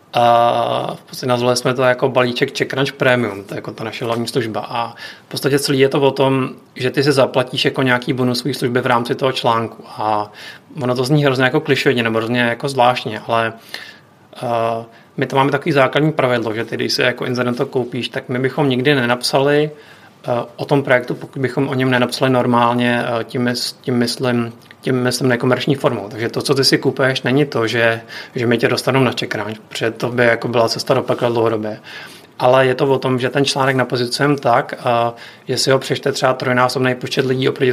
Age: 30-49